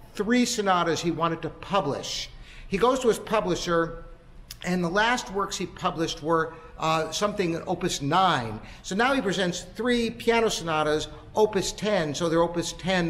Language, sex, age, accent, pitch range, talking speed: English, male, 60-79, American, 165-215 Hz, 160 wpm